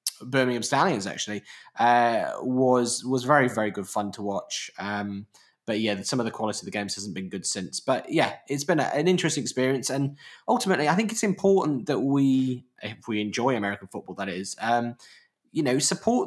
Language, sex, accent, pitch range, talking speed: English, male, British, 105-135 Hz, 190 wpm